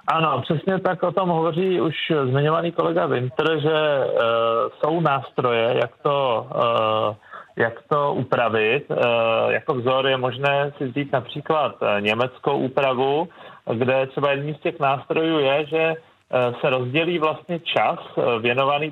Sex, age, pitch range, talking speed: male, 40-59, 125-155 Hz, 125 wpm